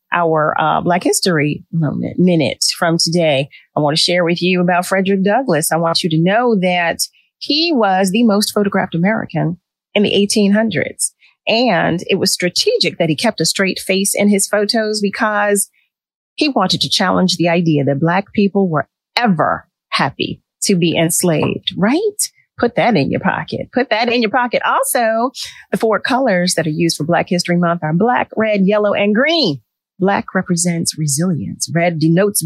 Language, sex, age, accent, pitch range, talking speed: English, female, 40-59, American, 165-225 Hz, 170 wpm